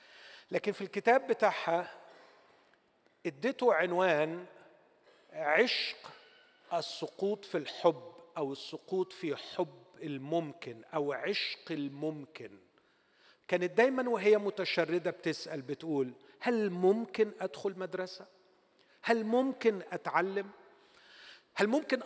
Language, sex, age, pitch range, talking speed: Arabic, male, 40-59, 155-210 Hz, 90 wpm